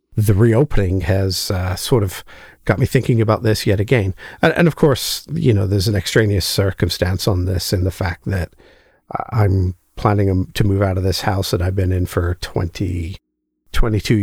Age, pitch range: 50-69, 95-115 Hz